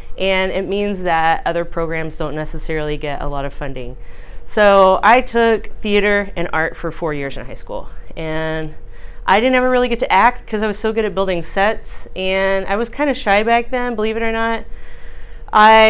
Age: 30-49